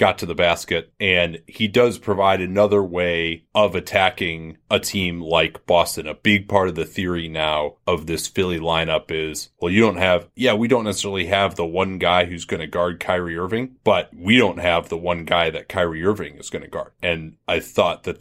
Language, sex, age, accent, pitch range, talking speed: English, male, 30-49, American, 85-105 Hz, 210 wpm